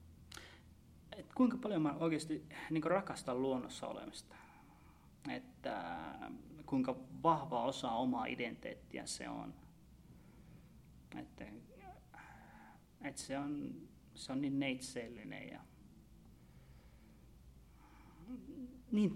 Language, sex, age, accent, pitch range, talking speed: Finnish, male, 30-49, native, 120-155 Hz, 80 wpm